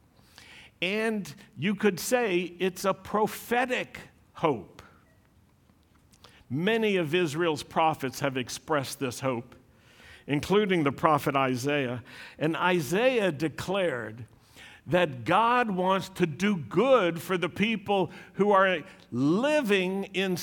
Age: 60-79